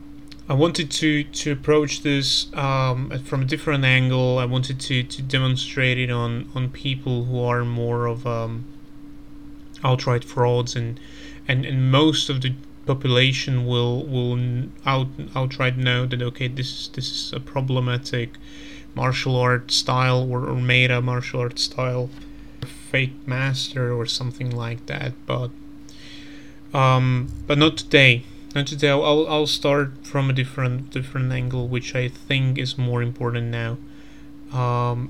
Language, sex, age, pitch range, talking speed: Slovak, male, 30-49, 125-145 Hz, 145 wpm